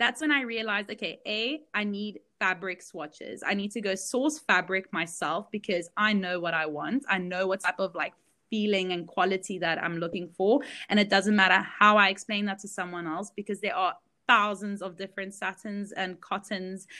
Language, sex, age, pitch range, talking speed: English, female, 20-39, 170-210 Hz, 200 wpm